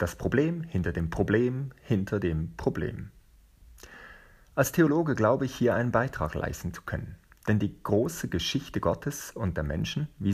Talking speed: 155 wpm